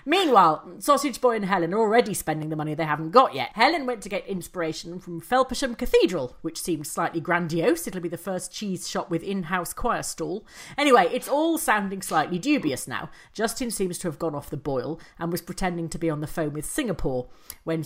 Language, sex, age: English, female, 40-59